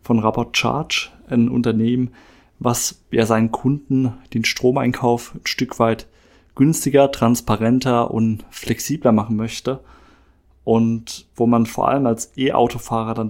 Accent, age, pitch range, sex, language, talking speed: German, 20-39, 115-125 Hz, male, German, 120 wpm